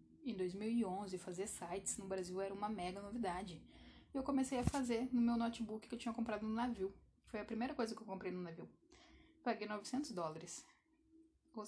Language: Portuguese